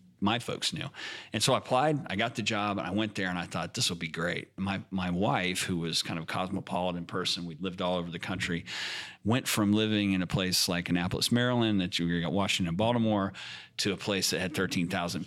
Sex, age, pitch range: male, 40-59, 90-110 Hz